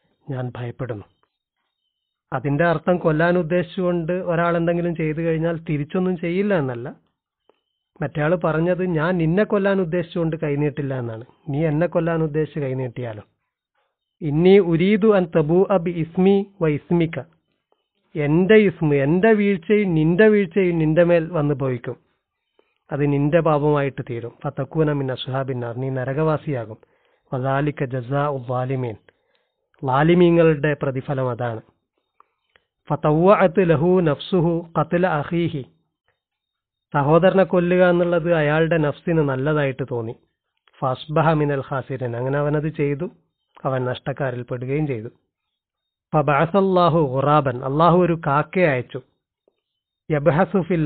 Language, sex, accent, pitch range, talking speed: Malayalam, male, native, 140-175 Hz, 80 wpm